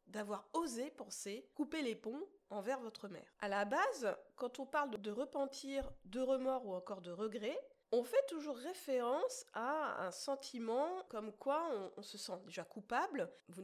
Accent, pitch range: French, 205-285 Hz